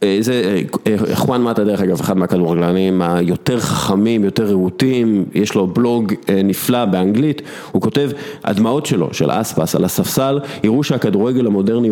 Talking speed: 130 wpm